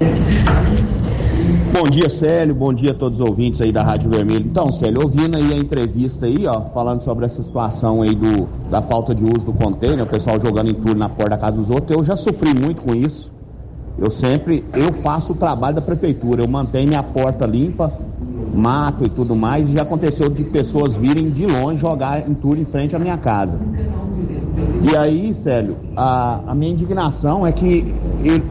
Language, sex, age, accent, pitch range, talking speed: Portuguese, male, 50-69, Brazilian, 120-160 Hz, 195 wpm